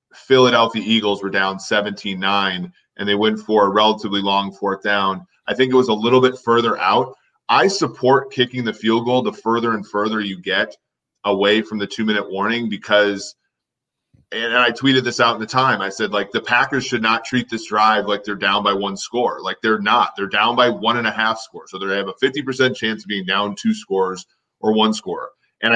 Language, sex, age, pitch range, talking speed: English, male, 30-49, 100-120 Hz, 205 wpm